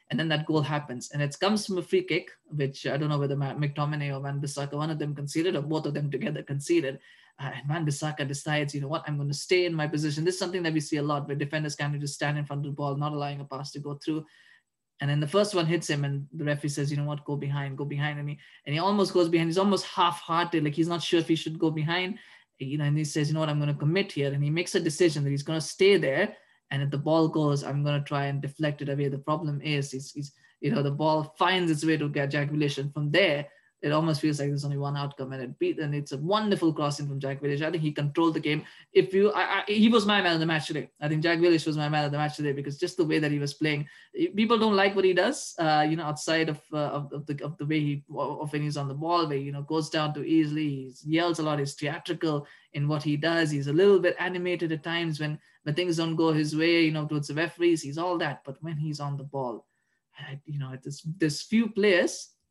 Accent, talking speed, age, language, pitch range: Indian, 280 wpm, 20-39, English, 145-165 Hz